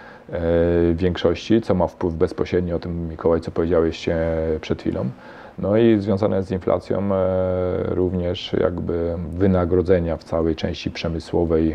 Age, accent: 40-59, native